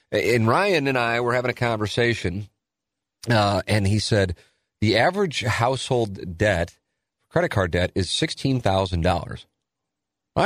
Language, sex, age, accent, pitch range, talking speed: English, male, 40-59, American, 95-120 Hz, 120 wpm